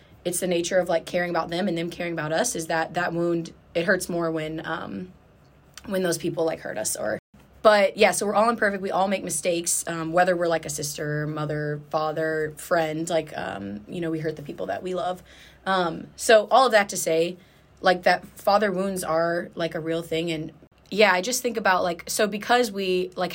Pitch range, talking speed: 165-190 Hz, 220 wpm